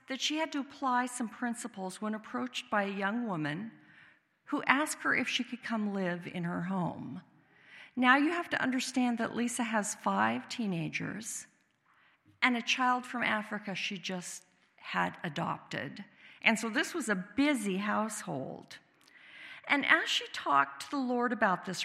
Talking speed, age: 160 wpm, 50-69